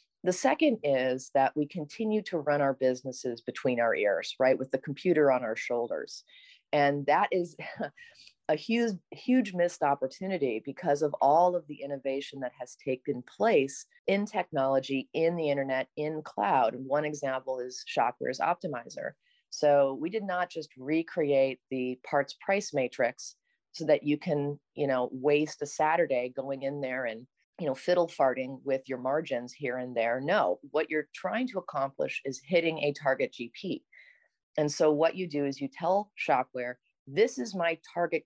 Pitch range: 130-175 Hz